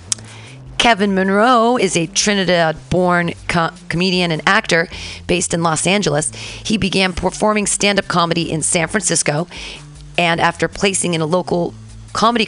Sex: female